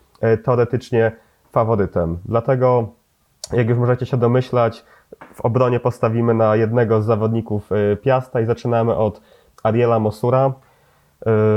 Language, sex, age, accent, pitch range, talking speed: Polish, male, 30-49, native, 110-125 Hz, 110 wpm